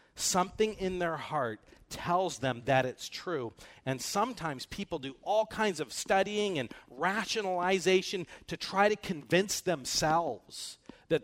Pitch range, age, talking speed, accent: 135-190 Hz, 40-59, 135 wpm, American